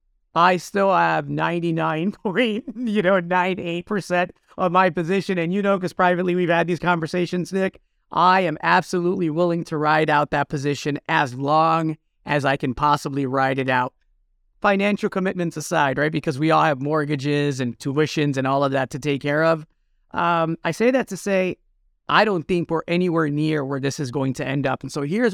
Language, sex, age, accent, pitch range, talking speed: English, male, 30-49, American, 145-180 Hz, 190 wpm